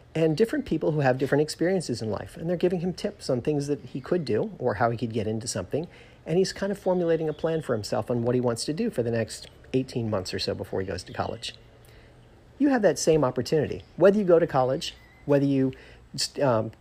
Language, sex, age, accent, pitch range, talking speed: English, male, 40-59, American, 125-180 Hz, 240 wpm